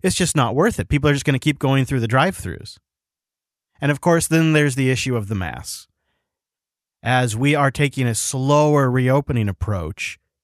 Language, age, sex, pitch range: English, 30-49, male, 110-140 Hz